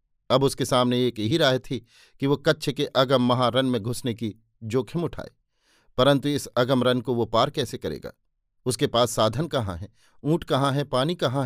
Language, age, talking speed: Hindi, 50-69, 195 wpm